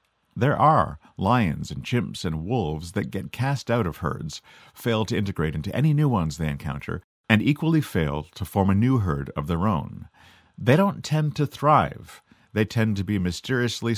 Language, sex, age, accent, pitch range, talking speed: English, male, 50-69, American, 85-130 Hz, 185 wpm